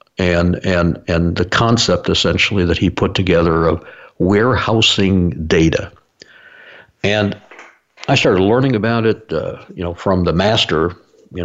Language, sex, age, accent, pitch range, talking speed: English, male, 60-79, American, 90-110 Hz, 135 wpm